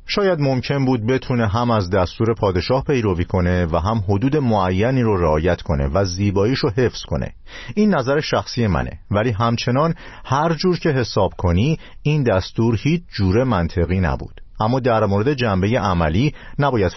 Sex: male